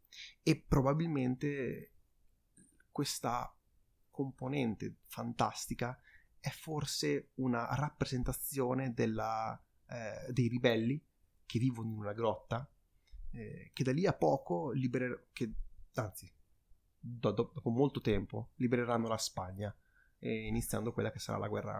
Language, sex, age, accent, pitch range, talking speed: Italian, male, 30-49, native, 105-135 Hz, 110 wpm